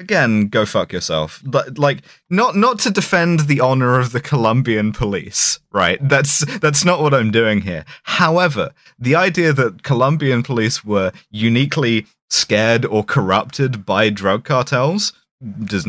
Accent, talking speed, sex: British, 145 wpm, male